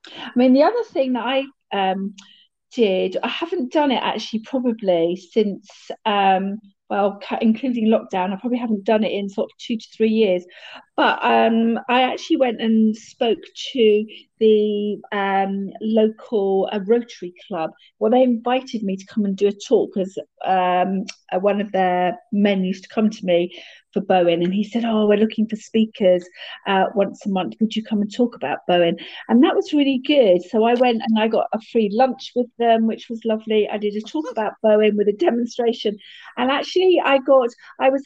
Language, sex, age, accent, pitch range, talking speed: English, female, 40-59, British, 205-255 Hz, 195 wpm